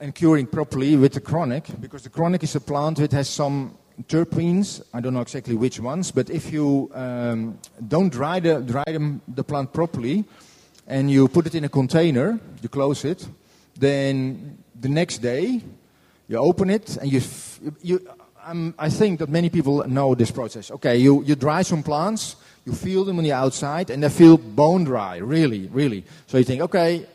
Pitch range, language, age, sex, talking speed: 135-165 Hz, English, 40-59, male, 190 wpm